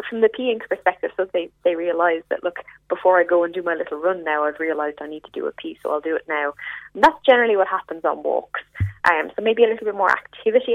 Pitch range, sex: 170-230 Hz, female